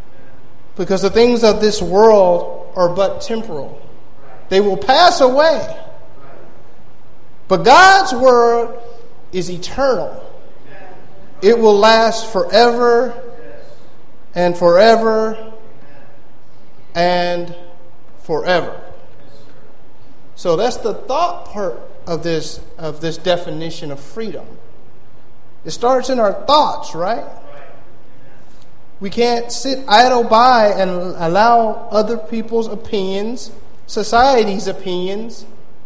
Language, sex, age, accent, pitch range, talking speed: English, male, 40-59, American, 185-235 Hz, 95 wpm